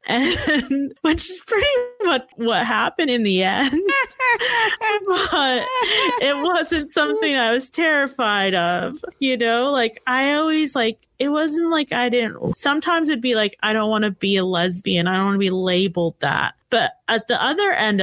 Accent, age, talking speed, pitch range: American, 30-49, 175 wpm, 180-275 Hz